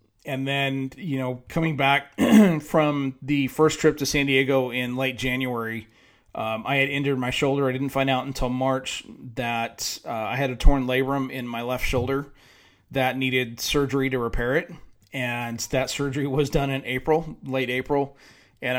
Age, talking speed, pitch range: 30-49, 175 wpm, 125-145 Hz